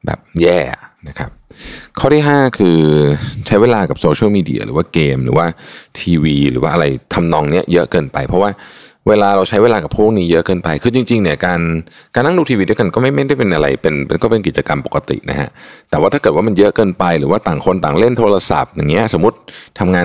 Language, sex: Thai, male